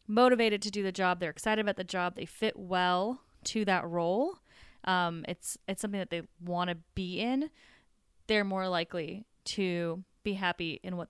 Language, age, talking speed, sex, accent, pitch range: English, 20-39, 185 wpm, female, American, 170-205 Hz